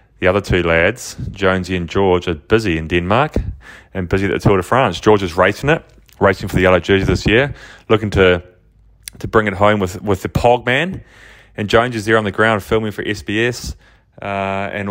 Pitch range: 90-110 Hz